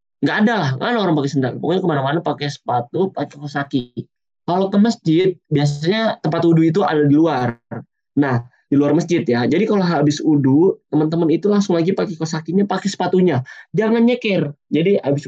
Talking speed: 175 wpm